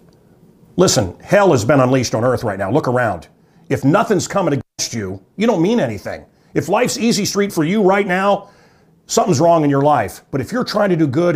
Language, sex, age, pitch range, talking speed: English, male, 40-59, 125-180 Hz, 210 wpm